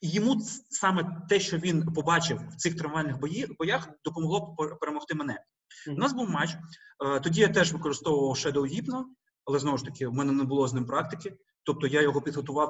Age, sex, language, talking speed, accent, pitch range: 30-49, male, Ukrainian, 185 wpm, native, 135-180 Hz